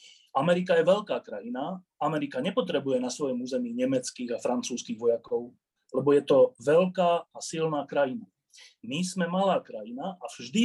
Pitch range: 140-230 Hz